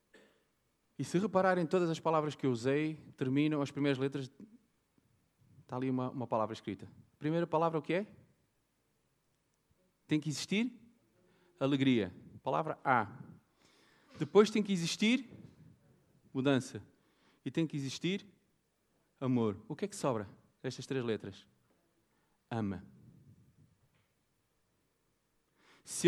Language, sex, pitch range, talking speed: Portuguese, male, 130-185 Hz, 115 wpm